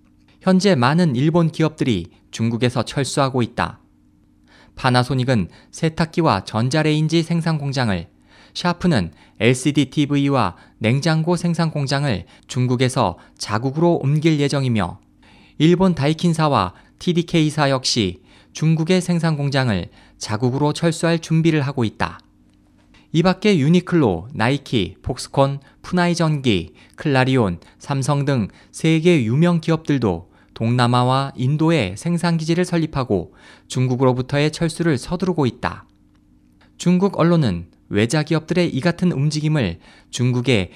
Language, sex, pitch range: Korean, male, 110-160 Hz